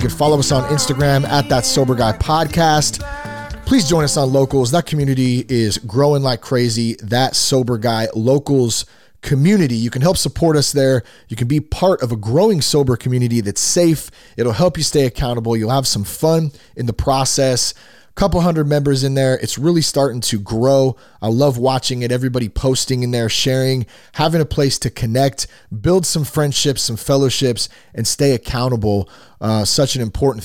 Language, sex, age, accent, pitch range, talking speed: English, male, 30-49, American, 110-145 Hz, 180 wpm